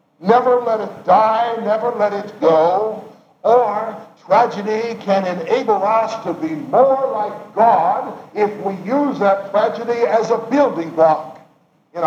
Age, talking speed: 60-79, 140 wpm